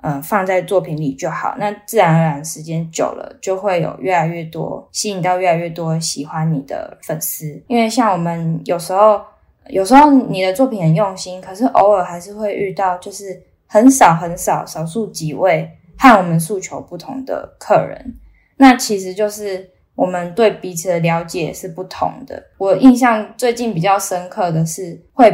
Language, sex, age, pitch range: Chinese, female, 10-29, 175-230 Hz